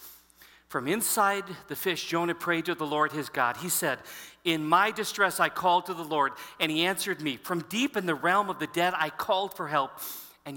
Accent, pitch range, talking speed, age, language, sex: American, 130-190 Hz, 215 wpm, 40-59, English, male